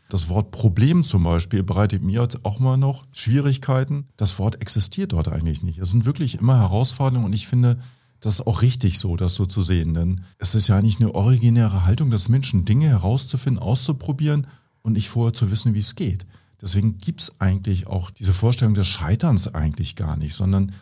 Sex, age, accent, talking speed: male, 40-59, German, 195 wpm